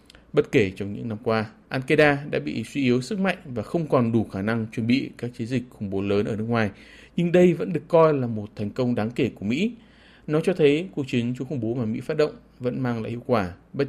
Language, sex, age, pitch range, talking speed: Vietnamese, male, 20-39, 110-145 Hz, 265 wpm